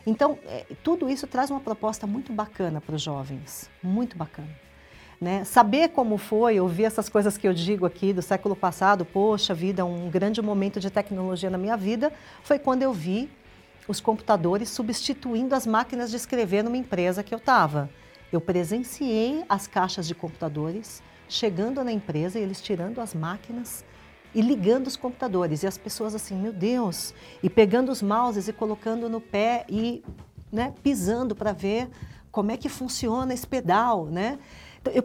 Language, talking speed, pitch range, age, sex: Portuguese, 170 wpm, 185-240 Hz, 50-69, female